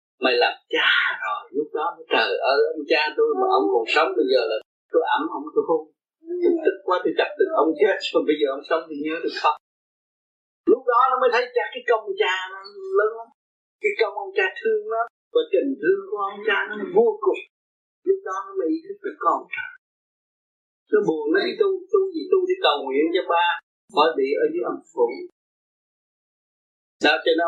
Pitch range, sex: 285-445 Hz, male